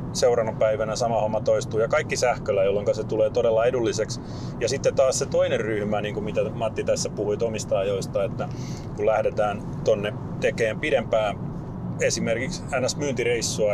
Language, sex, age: Finnish, male, 30-49